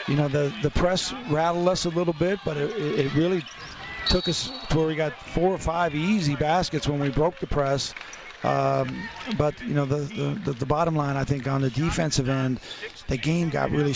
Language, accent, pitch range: English, American, 135-160 Hz